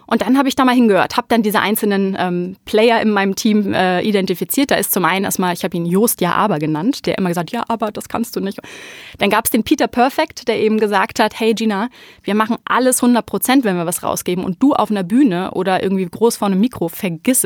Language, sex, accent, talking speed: German, female, German, 245 wpm